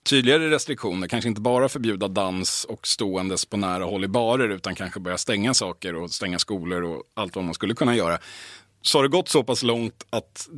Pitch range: 95-130 Hz